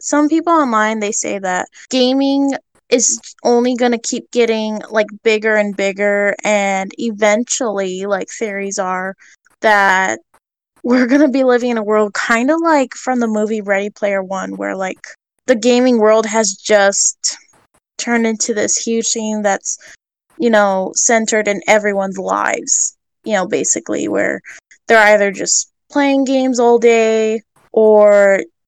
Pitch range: 200-235 Hz